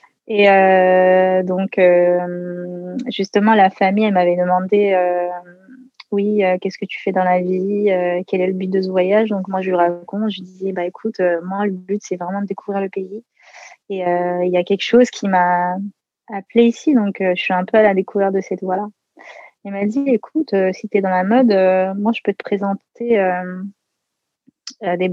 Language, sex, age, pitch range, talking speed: French, female, 20-39, 185-215 Hz, 215 wpm